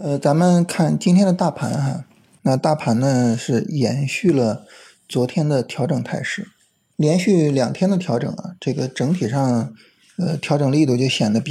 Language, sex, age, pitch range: Chinese, male, 20-39, 125-180 Hz